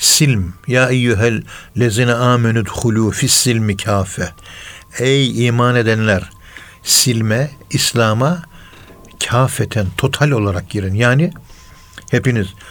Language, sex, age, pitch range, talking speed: Turkish, male, 60-79, 95-125 Hz, 90 wpm